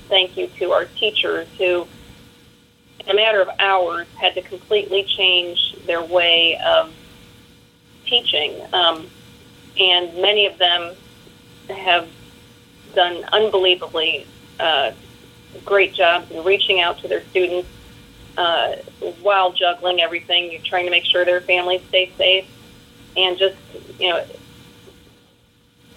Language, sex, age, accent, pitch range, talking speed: English, female, 30-49, American, 175-200 Hz, 120 wpm